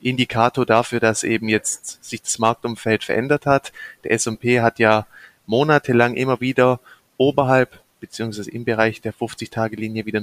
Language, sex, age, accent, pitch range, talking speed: German, male, 30-49, German, 110-130 Hz, 140 wpm